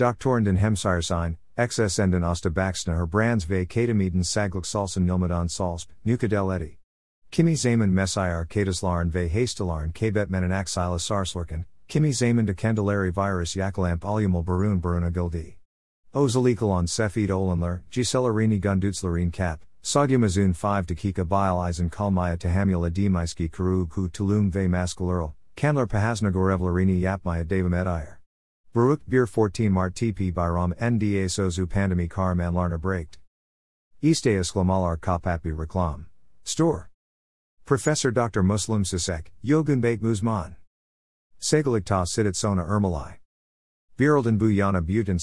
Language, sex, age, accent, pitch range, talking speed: Turkish, male, 50-69, American, 85-105 Hz, 125 wpm